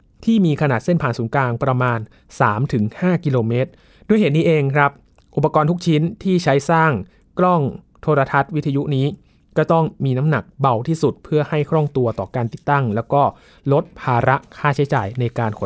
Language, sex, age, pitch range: Thai, male, 20-39, 125-160 Hz